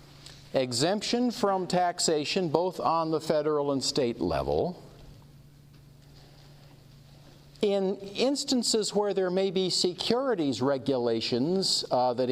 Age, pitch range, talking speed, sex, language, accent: 50-69, 135-185 Hz, 95 wpm, male, English, American